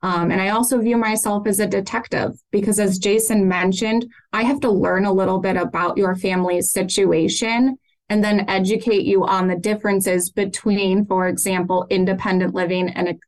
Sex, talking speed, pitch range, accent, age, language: female, 165 wpm, 185-215 Hz, American, 20-39, English